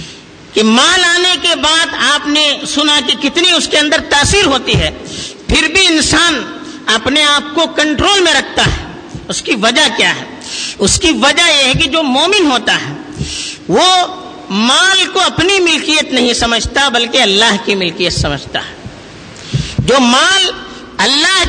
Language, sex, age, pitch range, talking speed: Urdu, female, 50-69, 250-335 Hz, 160 wpm